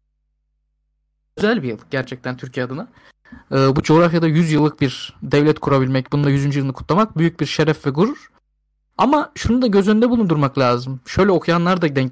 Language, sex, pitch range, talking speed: Turkish, male, 130-195 Hz, 165 wpm